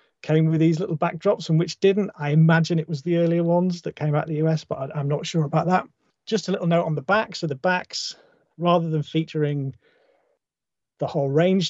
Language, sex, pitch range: English, male, 140-180 Hz